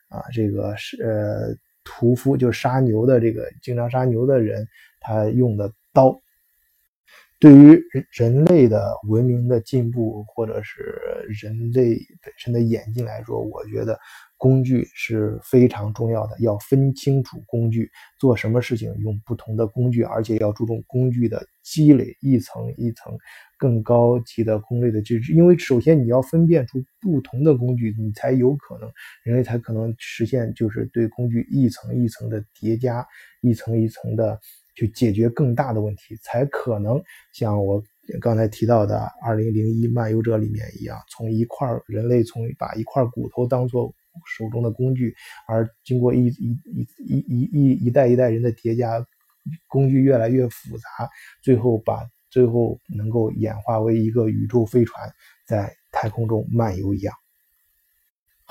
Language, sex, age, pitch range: Chinese, male, 20-39, 110-125 Hz